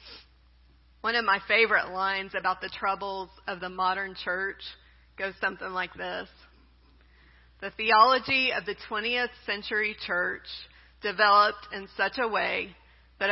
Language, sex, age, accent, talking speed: English, female, 40-59, American, 130 wpm